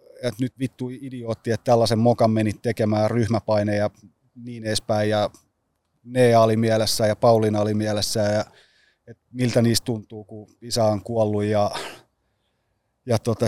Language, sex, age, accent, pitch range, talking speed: Finnish, male, 30-49, native, 105-125 Hz, 135 wpm